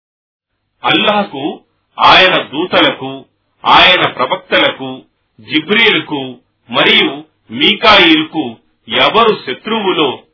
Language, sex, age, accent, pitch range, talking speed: Telugu, male, 40-59, native, 145-220 Hz, 60 wpm